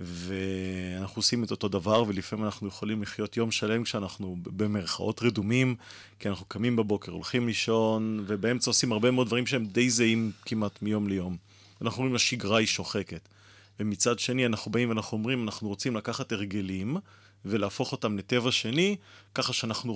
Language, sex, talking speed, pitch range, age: Hebrew, male, 155 wpm, 100-125 Hz, 30-49